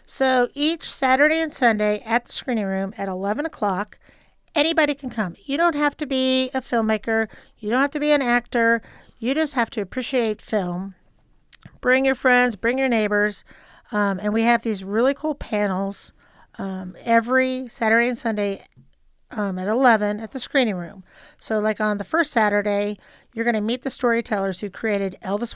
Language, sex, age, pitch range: English, female, 40-59, 205-250 Hz